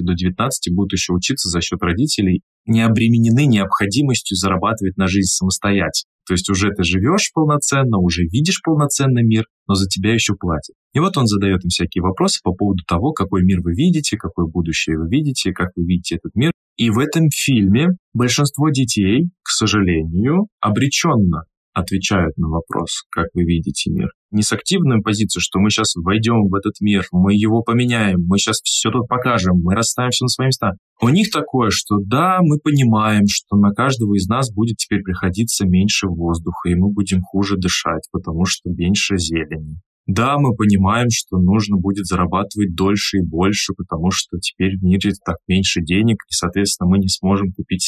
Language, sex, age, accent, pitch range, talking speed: Russian, male, 20-39, native, 90-115 Hz, 180 wpm